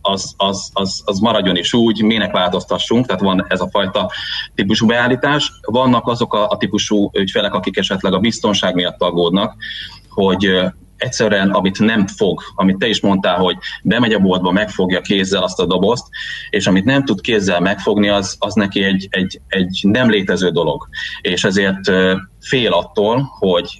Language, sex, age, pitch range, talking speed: Hungarian, male, 30-49, 95-110 Hz, 170 wpm